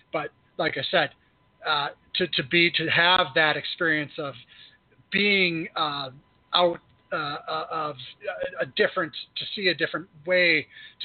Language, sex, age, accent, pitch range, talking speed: English, male, 40-59, American, 150-190 Hz, 135 wpm